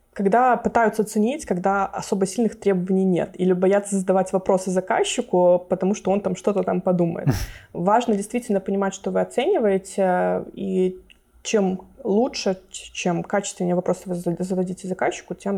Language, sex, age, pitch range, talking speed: Russian, female, 20-39, 190-230 Hz, 140 wpm